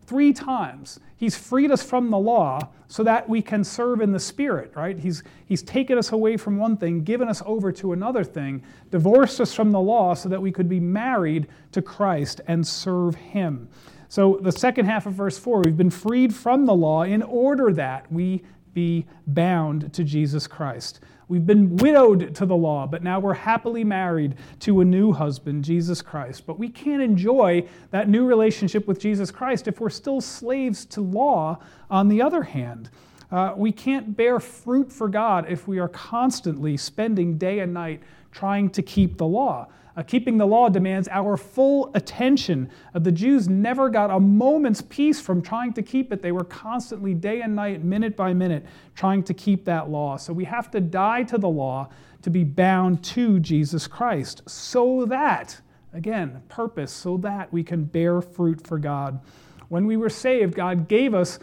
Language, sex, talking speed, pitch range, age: English, male, 190 wpm, 170-225 Hz, 40-59